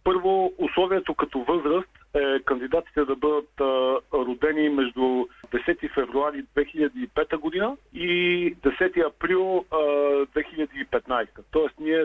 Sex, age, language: male, 50-69, Bulgarian